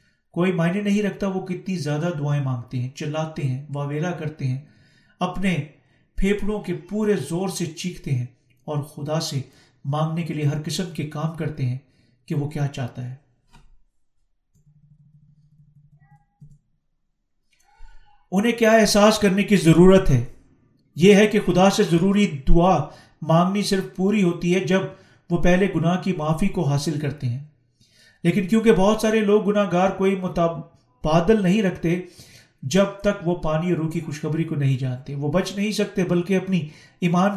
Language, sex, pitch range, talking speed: Urdu, male, 145-190 Hz, 155 wpm